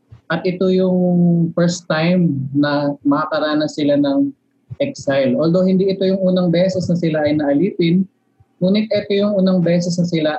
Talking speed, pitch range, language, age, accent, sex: 155 wpm, 140-180 Hz, Filipino, 20-39, native, male